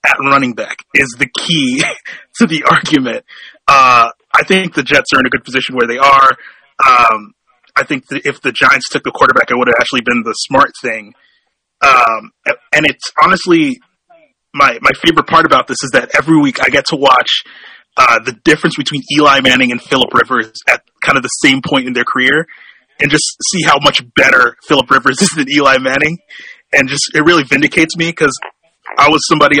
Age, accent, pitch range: 30-49, American, 130-190 Hz